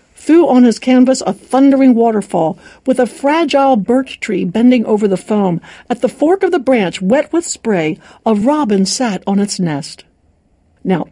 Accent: American